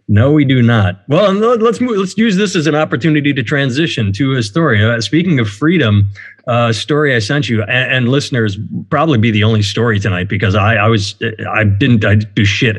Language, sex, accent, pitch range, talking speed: English, male, American, 110-145 Hz, 205 wpm